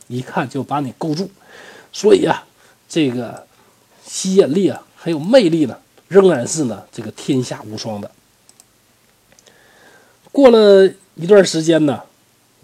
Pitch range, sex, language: 125-185 Hz, male, Chinese